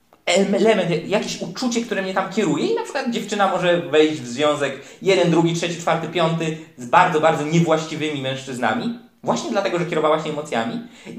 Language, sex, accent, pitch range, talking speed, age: Polish, male, native, 130-185 Hz, 170 wpm, 20-39